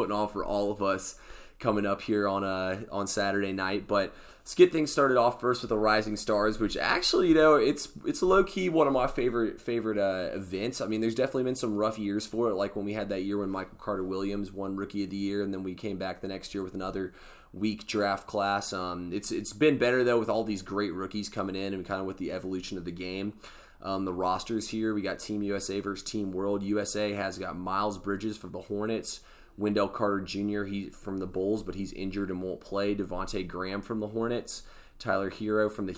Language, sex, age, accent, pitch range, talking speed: English, male, 20-39, American, 95-110 Hz, 235 wpm